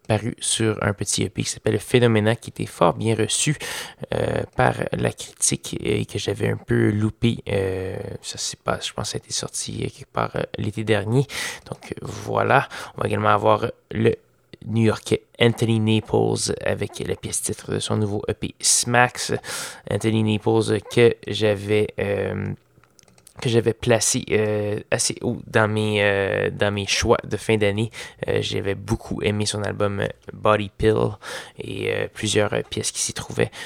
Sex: male